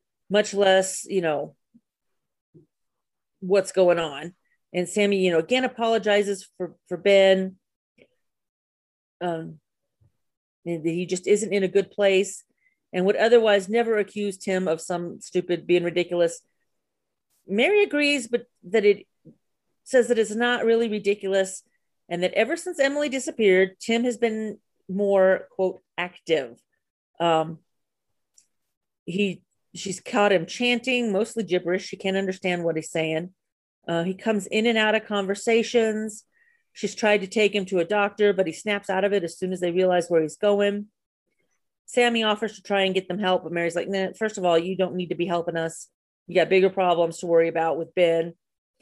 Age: 40-59